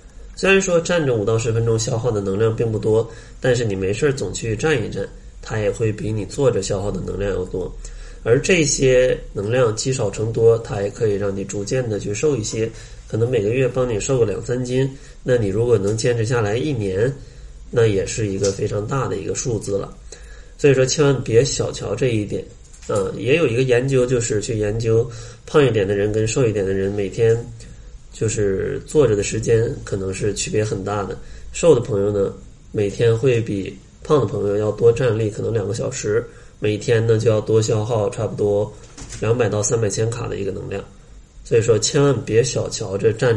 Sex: male